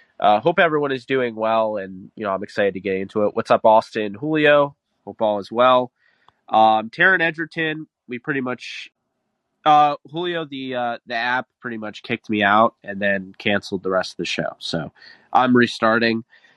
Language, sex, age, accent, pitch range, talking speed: English, male, 20-39, American, 105-140 Hz, 185 wpm